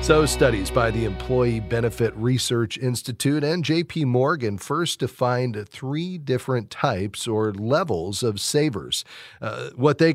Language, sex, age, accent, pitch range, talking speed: English, male, 40-59, American, 110-145 Hz, 135 wpm